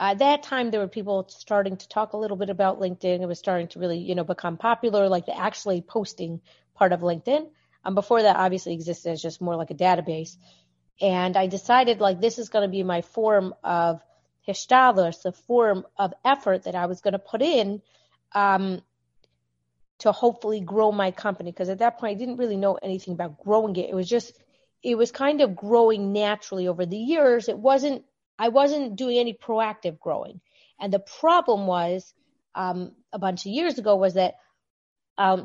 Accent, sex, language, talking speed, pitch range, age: American, female, English, 195 wpm, 180-230 Hz, 30-49